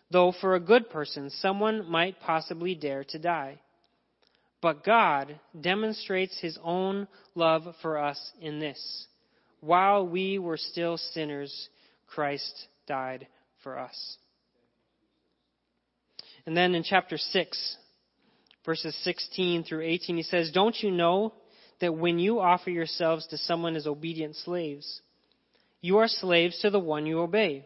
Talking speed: 135 wpm